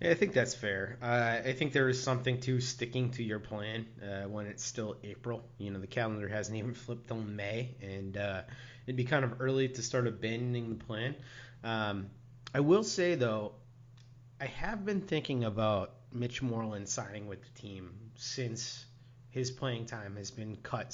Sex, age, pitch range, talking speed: male, 30-49, 110-130 Hz, 185 wpm